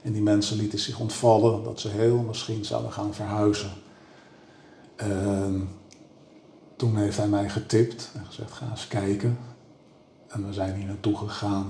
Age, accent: 50-69, Dutch